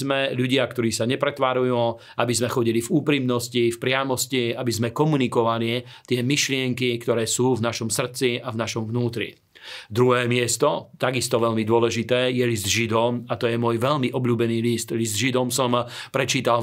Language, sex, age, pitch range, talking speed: Slovak, male, 40-59, 115-130 Hz, 160 wpm